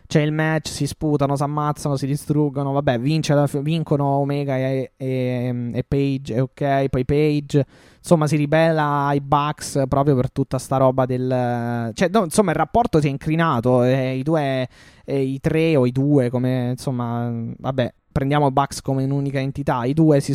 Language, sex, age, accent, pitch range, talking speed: Italian, male, 20-39, native, 135-155 Hz, 160 wpm